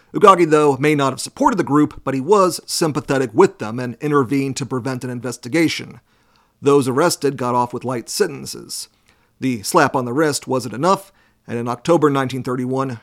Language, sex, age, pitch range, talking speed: English, male, 40-59, 125-150 Hz, 175 wpm